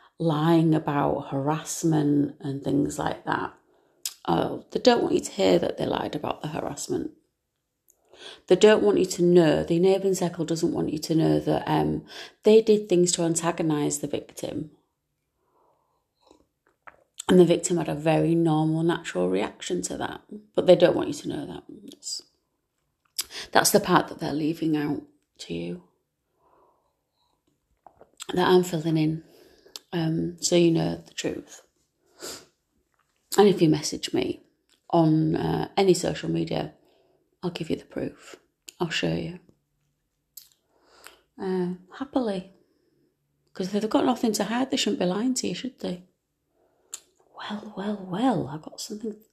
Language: English